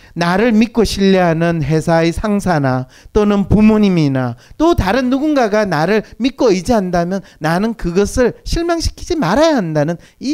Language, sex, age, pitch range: Korean, male, 40-59, 165-265 Hz